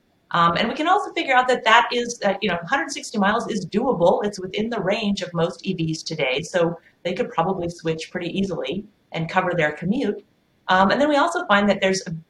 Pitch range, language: 165-230 Hz, English